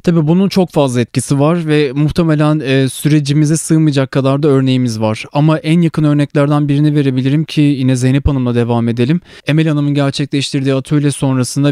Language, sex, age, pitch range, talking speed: Turkish, male, 30-49, 125-145 Hz, 165 wpm